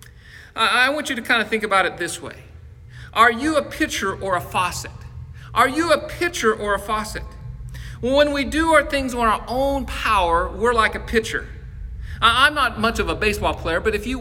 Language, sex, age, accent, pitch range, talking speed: English, male, 40-59, American, 205-245 Hz, 205 wpm